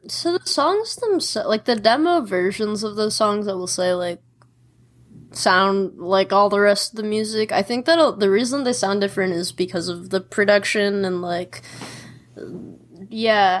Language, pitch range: English, 185-245 Hz